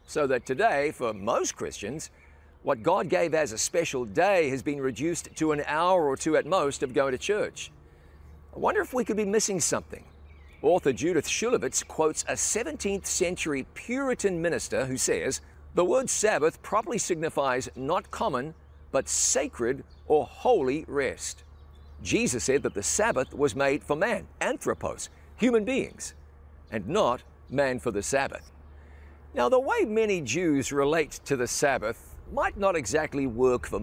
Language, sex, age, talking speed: English, male, 50-69, 160 wpm